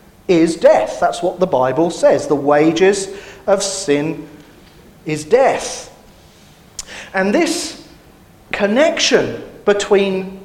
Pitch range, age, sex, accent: 175-235 Hz, 40-59, male, British